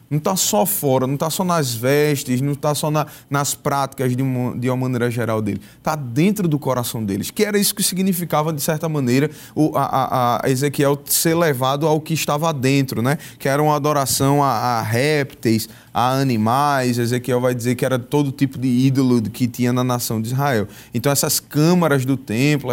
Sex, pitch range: male, 120-155 Hz